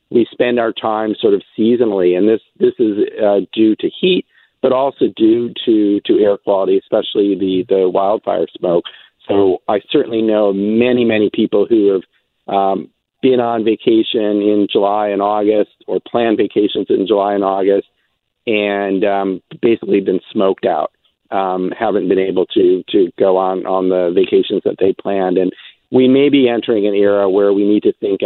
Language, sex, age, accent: English, male, 50-69, American